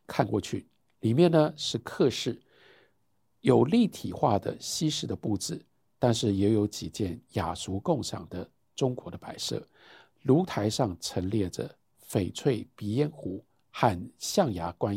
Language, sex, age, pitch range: Chinese, male, 50-69, 105-155 Hz